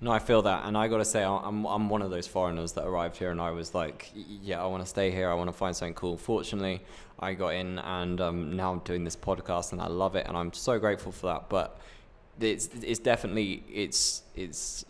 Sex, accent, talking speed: male, British, 245 wpm